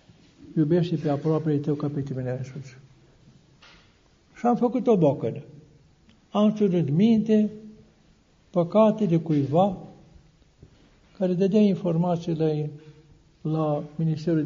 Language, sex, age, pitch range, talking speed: Romanian, male, 60-79, 150-185 Hz, 100 wpm